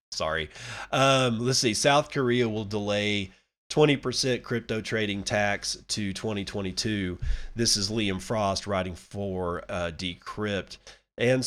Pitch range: 95-115 Hz